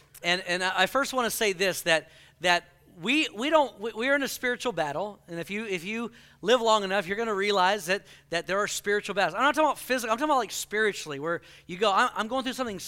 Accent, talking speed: American, 255 wpm